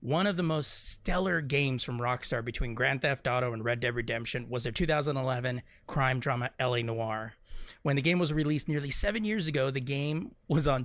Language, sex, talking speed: English, male, 200 wpm